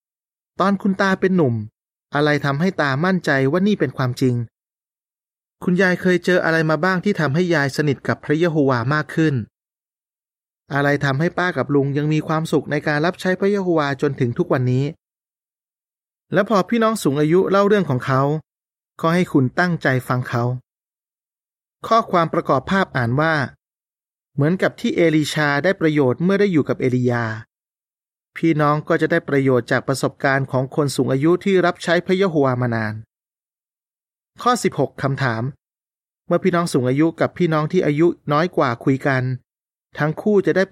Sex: male